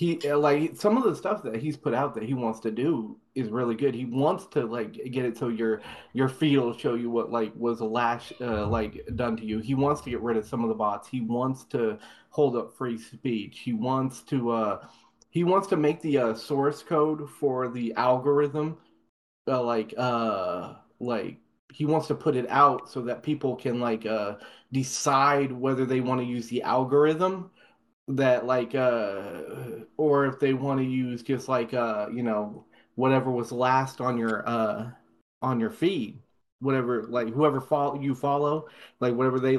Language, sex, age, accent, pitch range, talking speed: English, male, 30-49, American, 120-150 Hz, 195 wpm